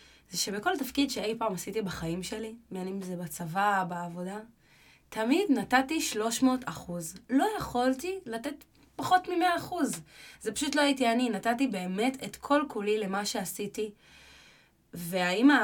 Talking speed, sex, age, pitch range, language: 130 wpm, female, 20-39, 190-265 Hz, Hebrew